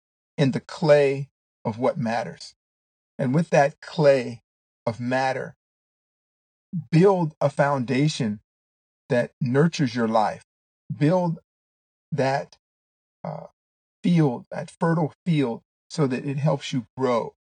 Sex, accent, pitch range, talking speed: male, American, 120-155 Hz, 110 wpm